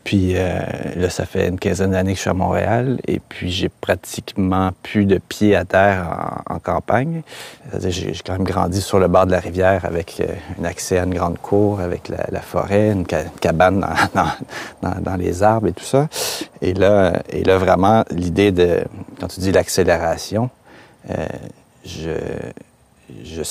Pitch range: 85-100 Hz